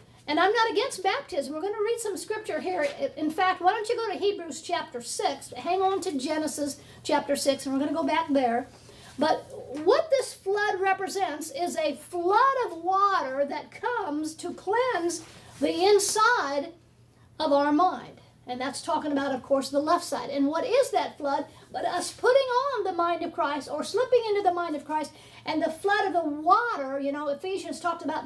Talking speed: 200 wpm